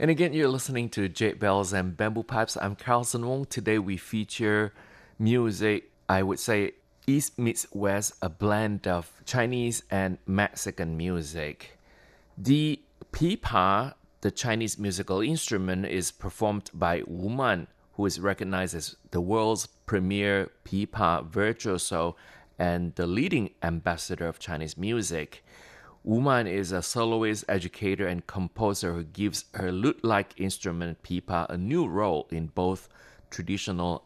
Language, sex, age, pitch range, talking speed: English, male, 30-49, 95-115 Hz, 135 wpm